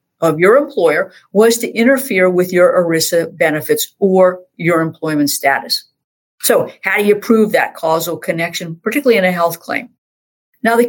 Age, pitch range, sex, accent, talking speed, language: 50-69, 165-225 Hz, female, American, 160 wpm, English